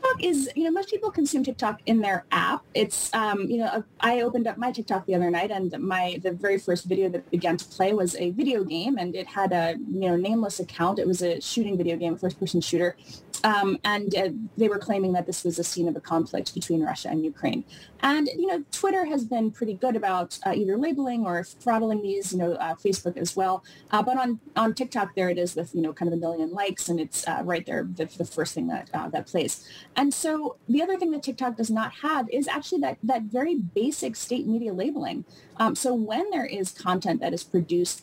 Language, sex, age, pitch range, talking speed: English, female, 20-39, 175-245 Hz, 235 wpm